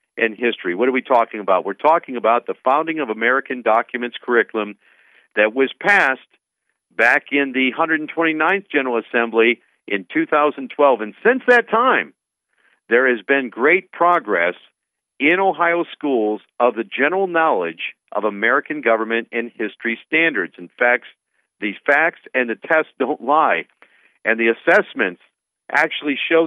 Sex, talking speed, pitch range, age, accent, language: male, 145 wpm, 115-165 Hz, 50-69, American, English